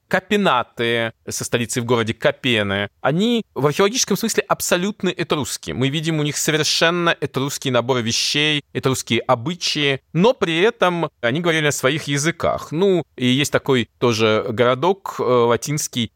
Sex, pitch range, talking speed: male, 120-170 Hz, 135 wpm